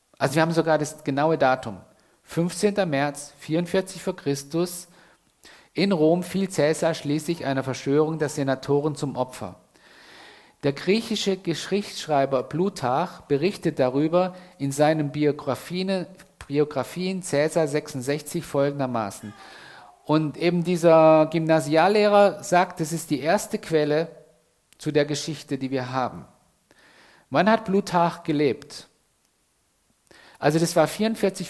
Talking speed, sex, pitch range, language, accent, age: 115 wpm, male, 145-185 Hz, German, German, 50-69